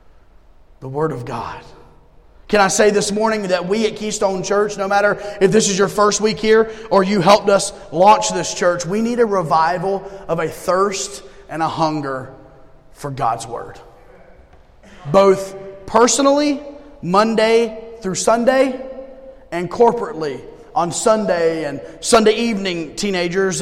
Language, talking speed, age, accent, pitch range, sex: English, 140 wpm, 30-49, American, 175-215 Hz, male